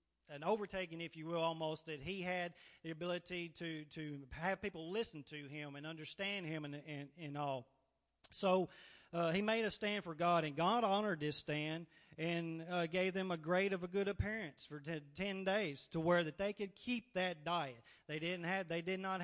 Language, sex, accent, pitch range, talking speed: English, male, American, 150-185 Hz, 205 wpm